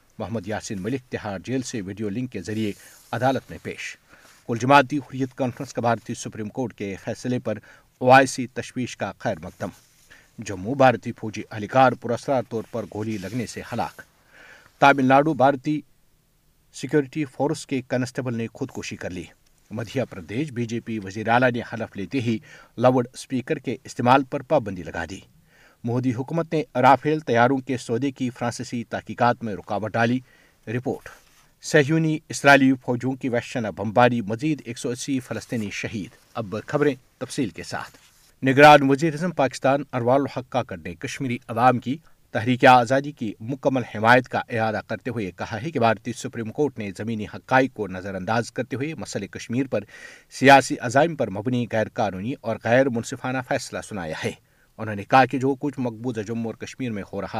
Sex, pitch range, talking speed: male, 110-135 Hz, 170 wpm